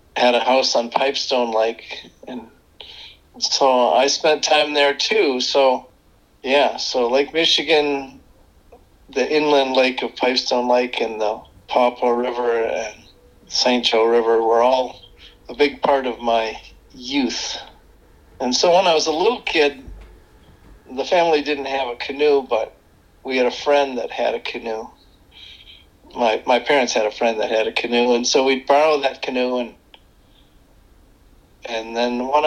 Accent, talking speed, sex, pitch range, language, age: American, 155 wpm, male, 115-140 Hz, English, 50-69